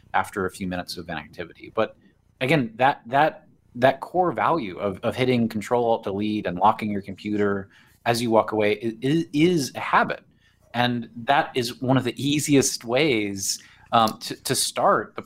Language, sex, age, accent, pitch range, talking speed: English, male, 30-49, American, 100-125 Hz, 175 wpm